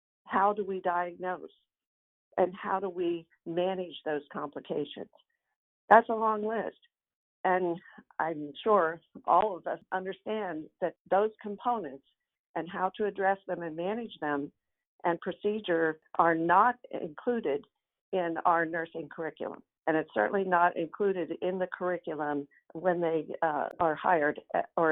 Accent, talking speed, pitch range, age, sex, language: American, 135 wpm, 165-205 Hz, 50-69, female, English